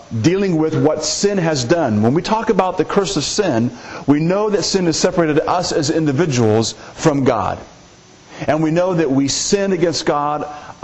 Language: English